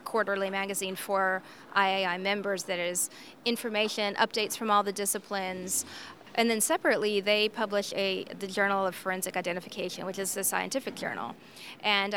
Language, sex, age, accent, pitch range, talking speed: English, female, 30-49, American, 195-235 Hz, 150 wpm